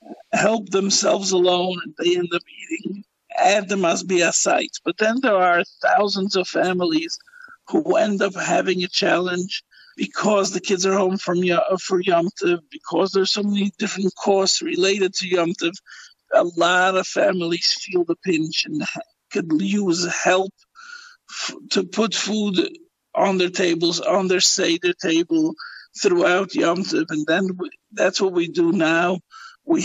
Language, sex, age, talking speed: English, male, 50-69, 145 wpm